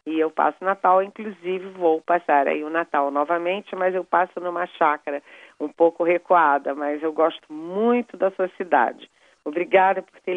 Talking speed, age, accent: 170 wpm, 40-59, Brazilian